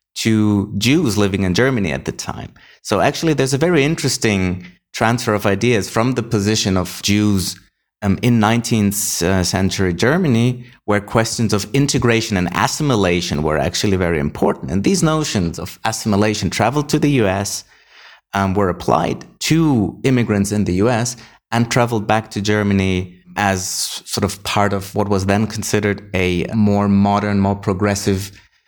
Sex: male